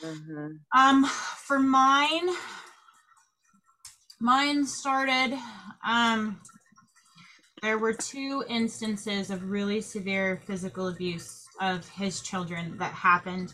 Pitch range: 185-225 Hz